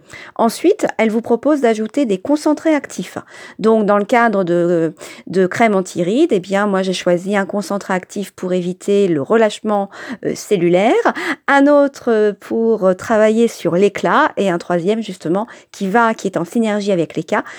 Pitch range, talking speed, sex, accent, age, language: 190-260 Hz, 170 wpm, female, French, 40-59, French